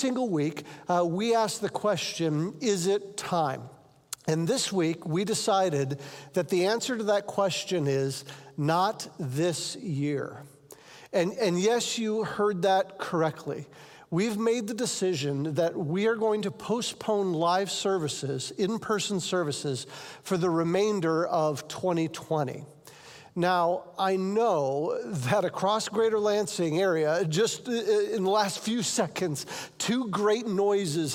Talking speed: 130 wpm